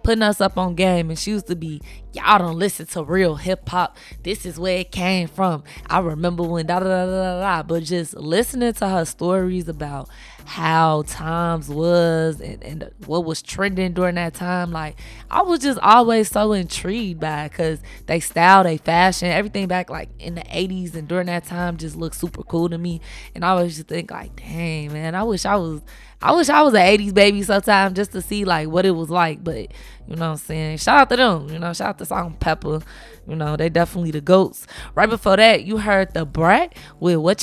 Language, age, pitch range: English, 20-39, 160-195 Hz